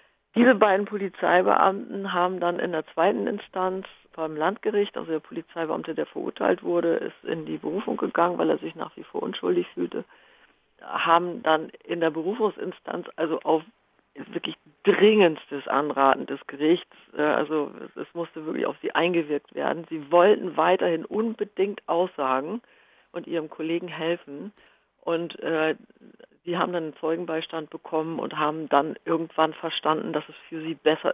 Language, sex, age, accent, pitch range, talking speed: German, female, 50-69, German, 155-185 Hz, 145 wpm